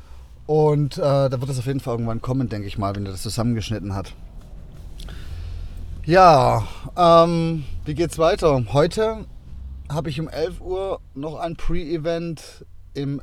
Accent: German